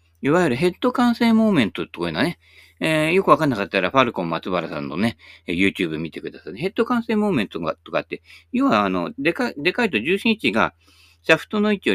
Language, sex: Japanese, male